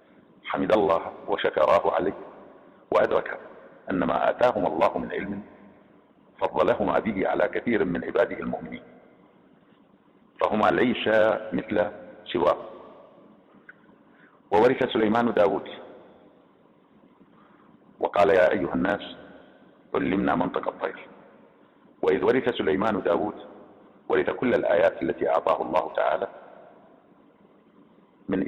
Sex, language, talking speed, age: male, English, 90 wpm, 50-69